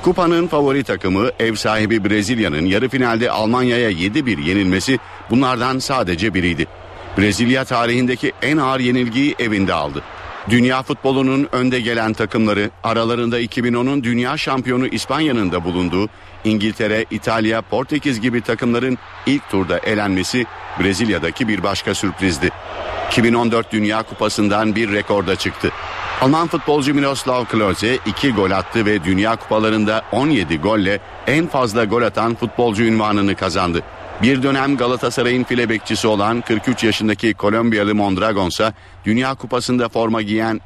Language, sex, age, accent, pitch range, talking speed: Turkish, male, 60-79, native, 95-125 Hz, 125 wpm